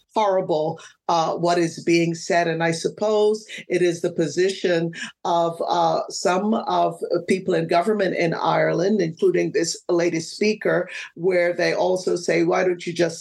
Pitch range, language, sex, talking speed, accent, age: 165-195 Hz, English, female, 155 wpm, American, 50-69